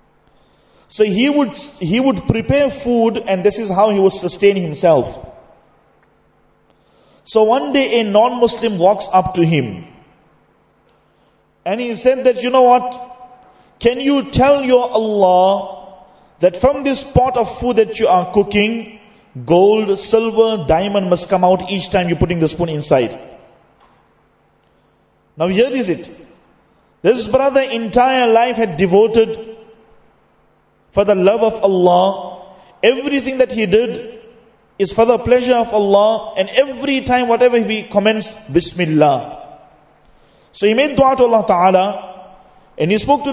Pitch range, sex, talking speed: 190-245 Hz, male, 140 wpm